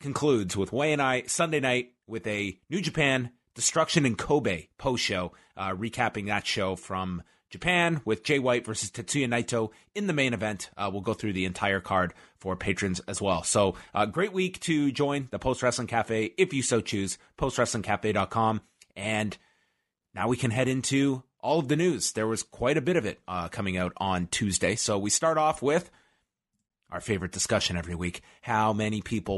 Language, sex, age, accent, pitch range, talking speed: English, male, 30-49, American, 100-140 Hz, 190 wpm